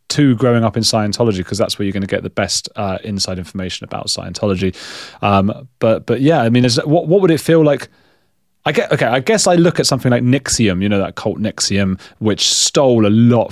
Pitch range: 95-125 Hz